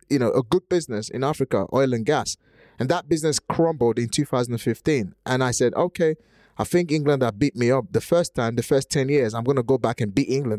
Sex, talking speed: male, 240 wpm